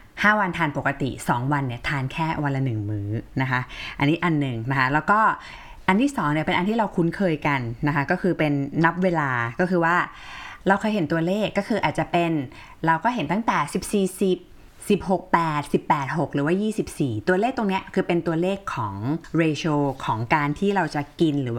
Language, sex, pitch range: Thai, female, 135-180 Hz